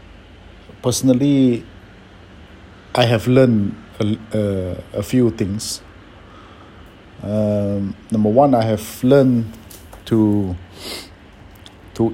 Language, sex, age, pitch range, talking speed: English, male, 50-69, 95-110 Hz, 85 wpm